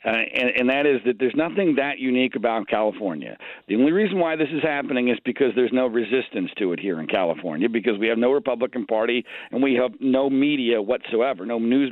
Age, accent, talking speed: 50-69, American, 215 wpm